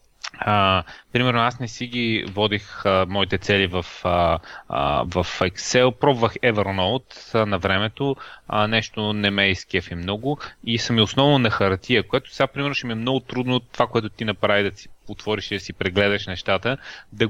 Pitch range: 100-120 Hz